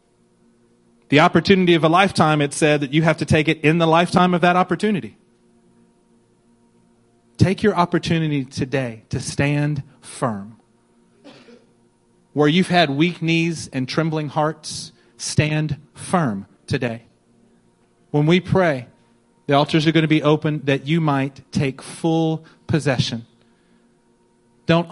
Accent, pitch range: American, 130-175 Hz